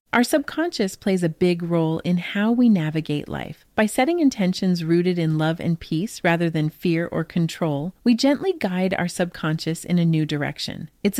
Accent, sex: American, female